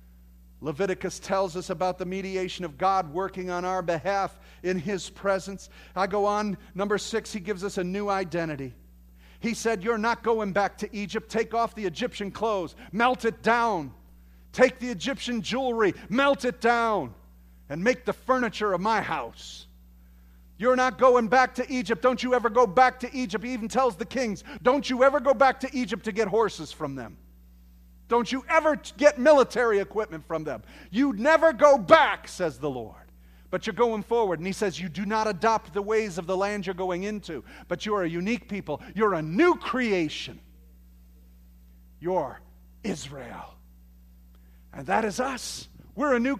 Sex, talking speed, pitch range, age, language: male, 180 wpm, 160-245 Hz, 40-59, English